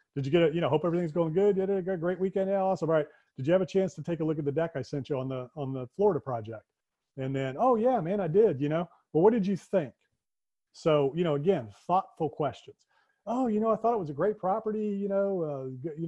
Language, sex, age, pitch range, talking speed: English, male, 40-59, 140-185 Hz, 260 wpm